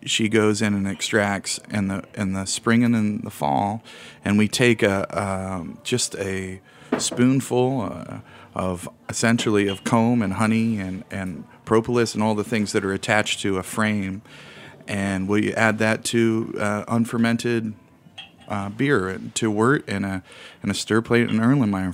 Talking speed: 170 wpm